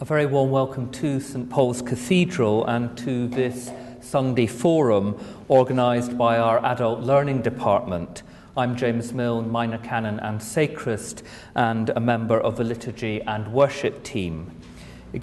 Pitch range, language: 115-135 Hz, English